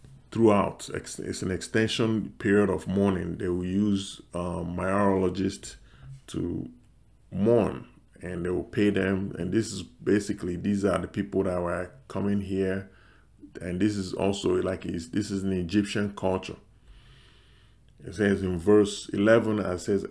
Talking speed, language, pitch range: 145 wpm, English, 95-110 Hz